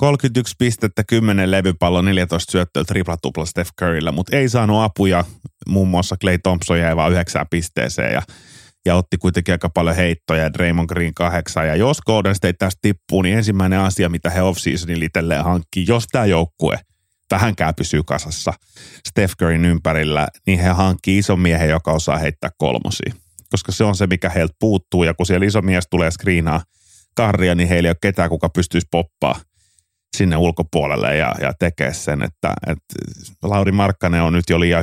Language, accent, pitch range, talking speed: Finnish, native, 85-95 Hz, 170 wpm